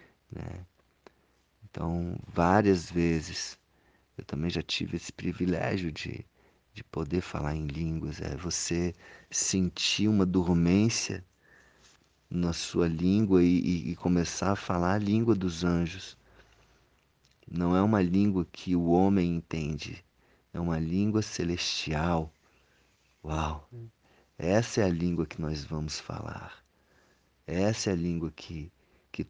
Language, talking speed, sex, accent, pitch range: Portuguese, 125 wpm, male, Brazilian, 80-95 Hz